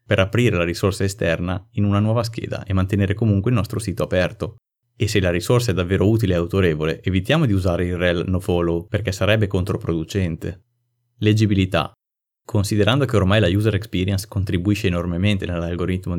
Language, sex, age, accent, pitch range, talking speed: Italian, male, 30-49, native, 90-110 Hz, 165 wpm